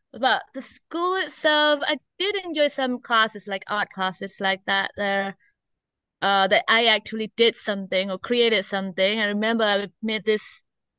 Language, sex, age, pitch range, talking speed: English, female, 20-39, 205-255 Hz, 165 wpm